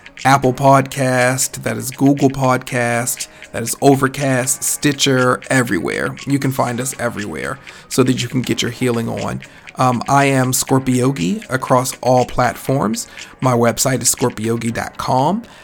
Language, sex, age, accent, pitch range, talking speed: English, male, 40-59, American, 120-140 Hz, 135 wpm